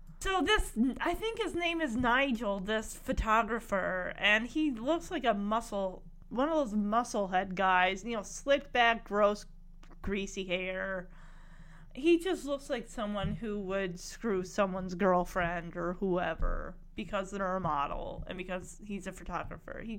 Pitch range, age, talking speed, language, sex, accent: 180-235 Hz, 30-49, 155 wpm, English, female, American